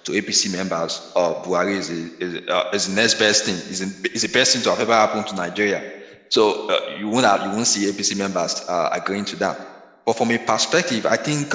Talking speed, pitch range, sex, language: 225 wpm, 95-125 Hz, male, English